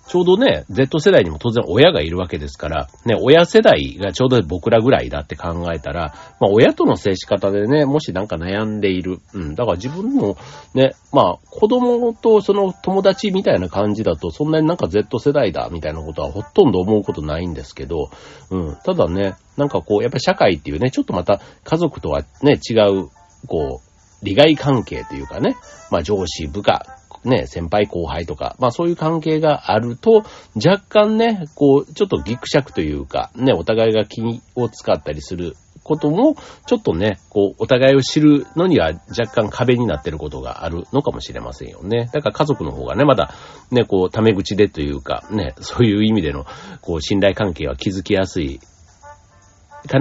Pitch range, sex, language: 90-145 Hz, male, Japanese